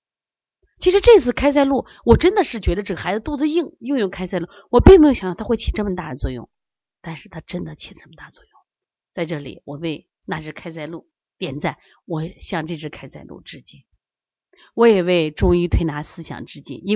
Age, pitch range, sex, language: 30-49, 160-235 Hz, female, Chinese